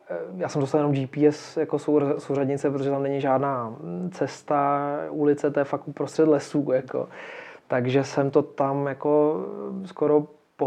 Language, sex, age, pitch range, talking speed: Czech, male, 20-39, 125-145 Hz, 145 wpm